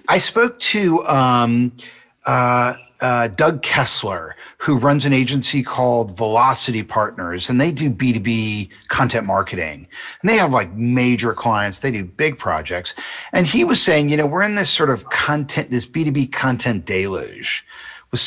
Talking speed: 160 wpm